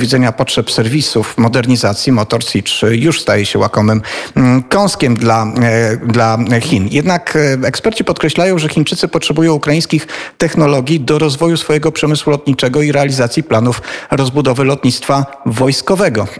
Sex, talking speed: male, 125 wpm